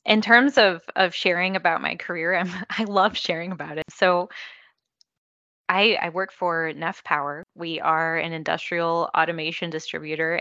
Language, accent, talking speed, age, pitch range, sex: English, American, 150 wpm, 20-39, 165-190 Hz, female